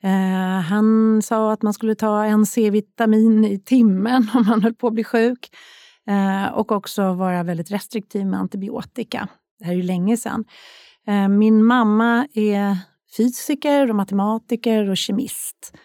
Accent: native